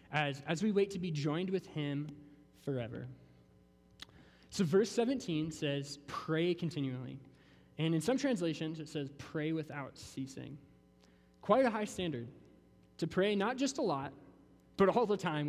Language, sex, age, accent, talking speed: English, male, 20-39, American, 150 wpm